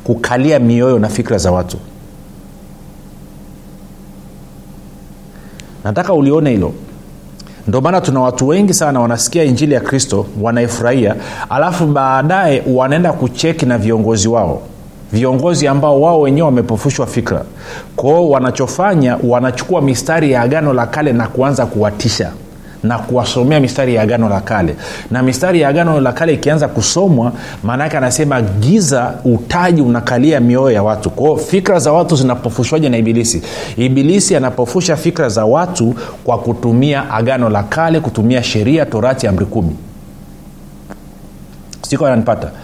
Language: Swahili